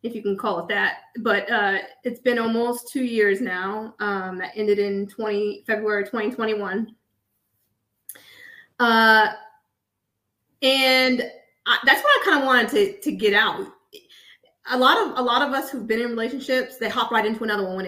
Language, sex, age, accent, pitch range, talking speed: English, female, 20-39, American, 205-260 Hz, 175 wpm